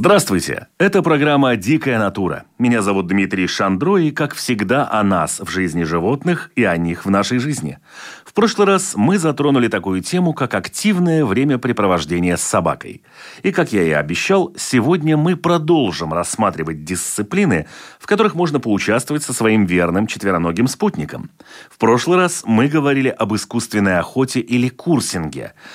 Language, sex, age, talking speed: Russian, male, 30-49, 150 wpm